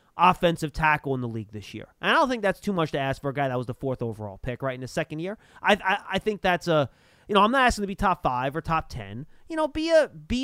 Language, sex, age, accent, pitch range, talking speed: English, male, 30-49, American, 150-220 Hz, 305 wpm